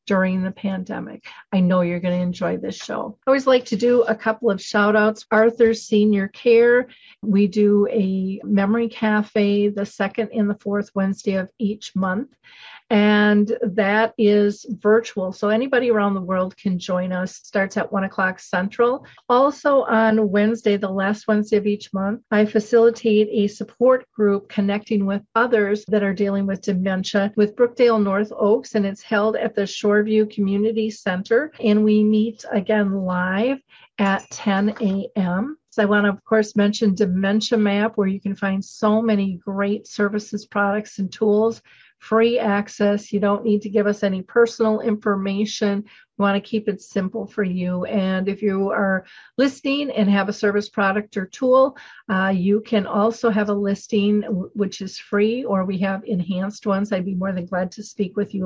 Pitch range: 195-220 Hz